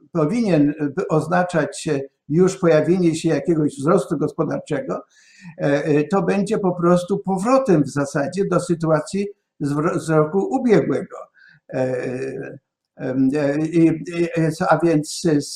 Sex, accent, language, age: male, native, Polish, 60-79